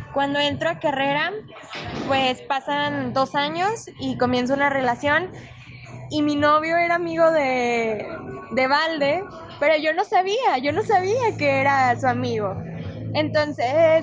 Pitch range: 275-360 Hz